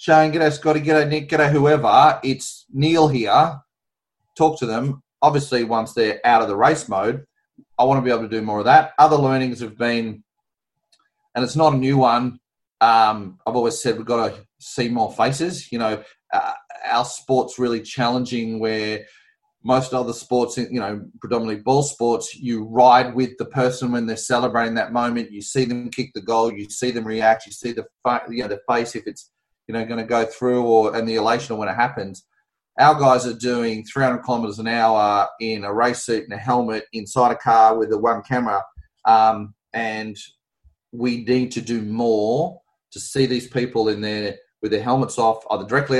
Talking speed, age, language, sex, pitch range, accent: 200 wpm, 30-49, English, male, 110-130 Hz, Australian